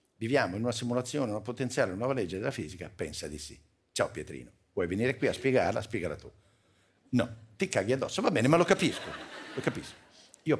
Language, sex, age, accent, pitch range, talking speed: Italian, male, 50-69, native, 90-125 Hz, 200 wpm